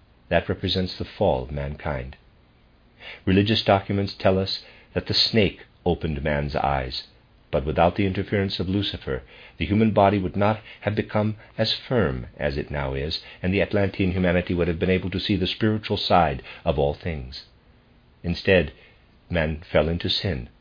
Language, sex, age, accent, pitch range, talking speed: English, male, 50-69, American, 75-100 Hz, 165 wpm